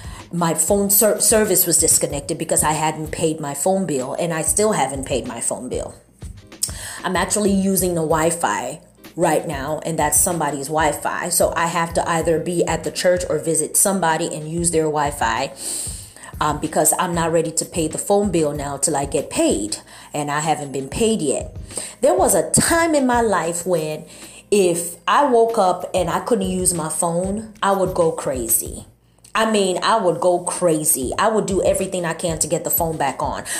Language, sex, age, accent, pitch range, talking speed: English, female, 30-49, American, 165-195 Hz, 195 wpm